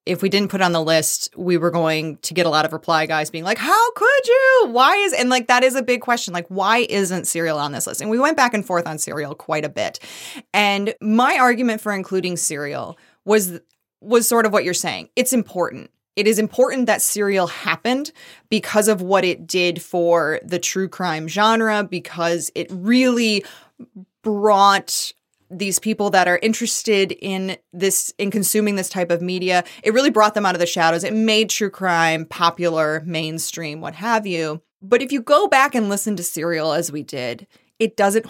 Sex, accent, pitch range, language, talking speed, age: female, American, 170-220 Hz, English, 200 wpm, 20-39